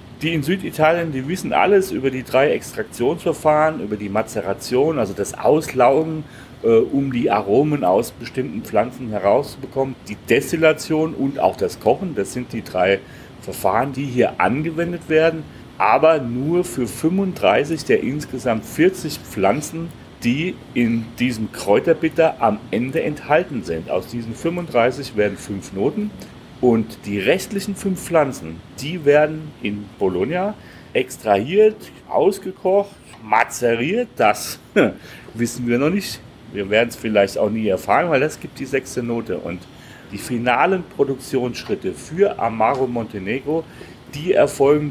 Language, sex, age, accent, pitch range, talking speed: German, male, 40-59, German, 115-160 Hz, 135 wpm